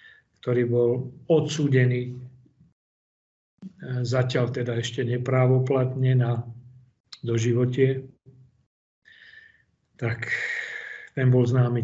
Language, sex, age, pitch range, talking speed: Slovak, male, 40-59, 120-145 Hz, 65 wpm